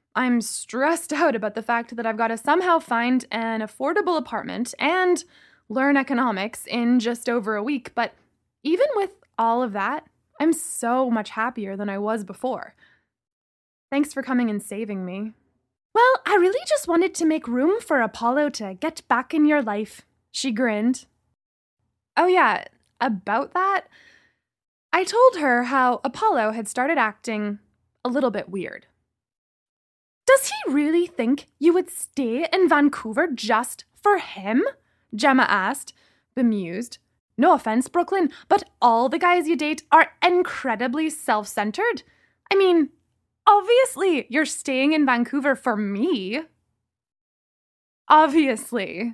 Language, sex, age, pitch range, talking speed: English, female, 20-39, 230-335 Hz, 140 wpm